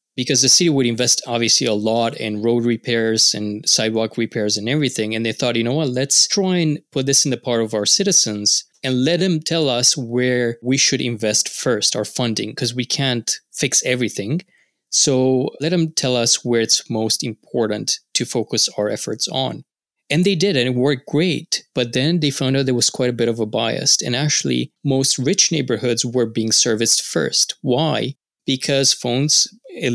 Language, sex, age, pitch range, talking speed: English, male, 20-39, 115-135 Hz, 195 wpm